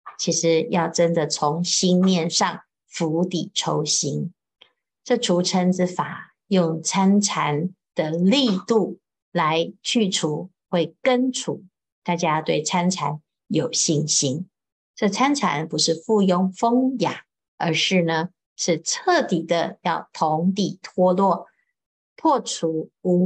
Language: Chinese